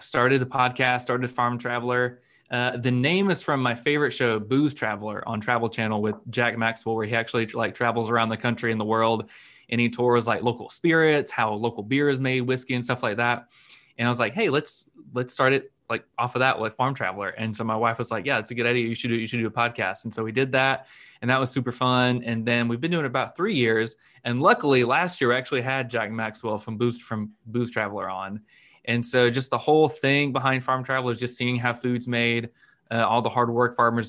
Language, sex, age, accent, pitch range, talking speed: English, male, 20-39, American, 115-130 Hz, 245 wpm